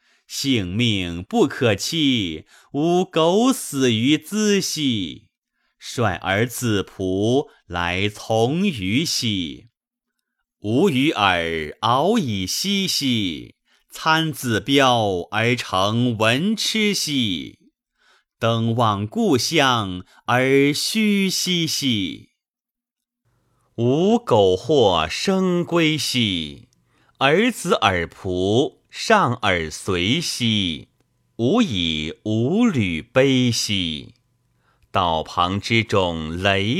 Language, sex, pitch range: Chinese, male, 95-165 Hz